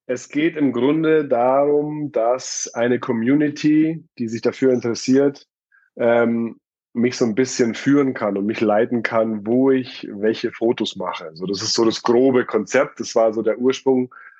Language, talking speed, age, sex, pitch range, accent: German, 170 wpm, 20-39, male, 110-130 Hz, German